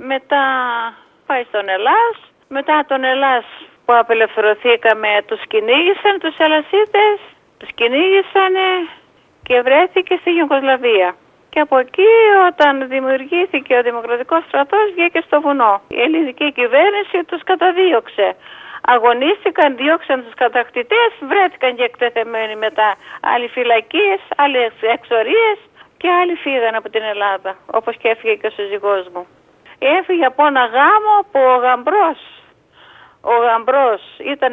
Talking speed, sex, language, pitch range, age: 120 wpm, female, Greek, 240-360 Hz, 40-59